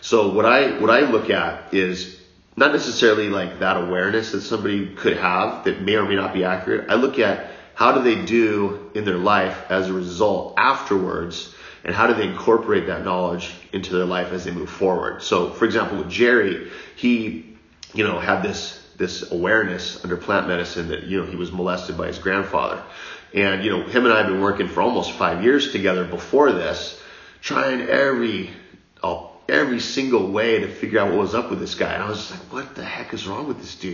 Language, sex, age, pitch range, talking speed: English, male, 30-49, 90-110 Hz, 210 wpm